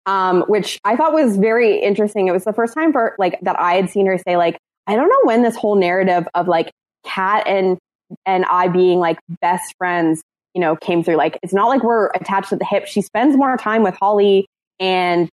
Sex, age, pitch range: female, 20-39, 170-205 Hz